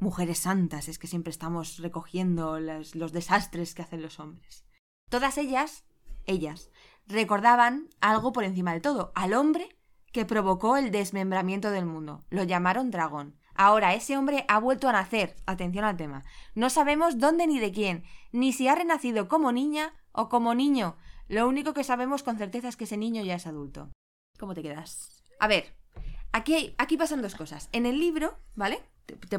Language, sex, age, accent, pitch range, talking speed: Spanish, female, 20-39, Spanish, 165-225 Hz, 180 wpm